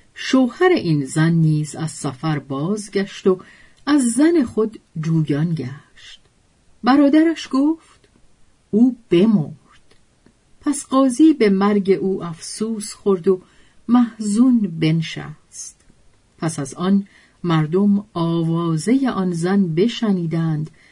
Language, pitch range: Persian, 165-240 Hz